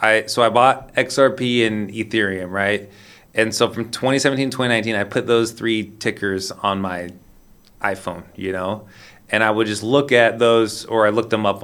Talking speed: 185 wpm